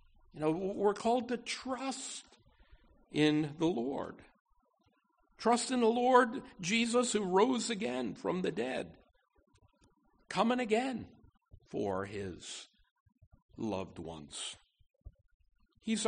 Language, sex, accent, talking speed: English, male, American, 100 wpm